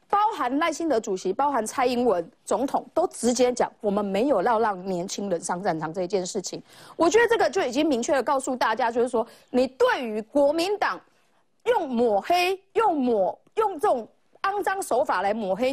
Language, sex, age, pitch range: Chinese, female, 30-49, 225-335 Hz